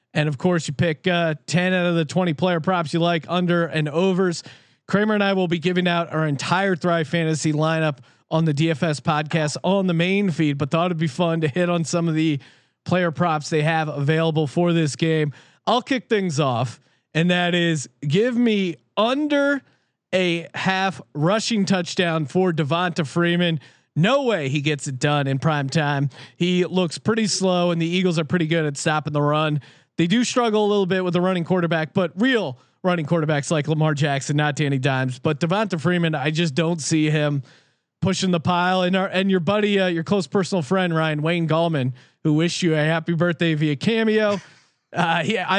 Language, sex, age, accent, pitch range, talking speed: English, male, 30-49, American, 150-185 Hz, 200 wpm